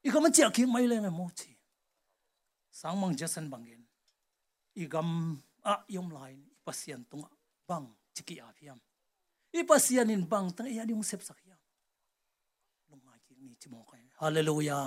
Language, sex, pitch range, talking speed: English, male, 160-245 Hz, 40 wpm